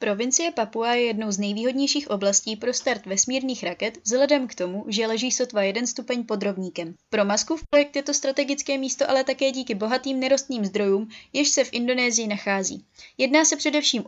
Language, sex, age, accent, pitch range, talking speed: Czech, female, 20-39, native, 210-265 Hz, 175 wpm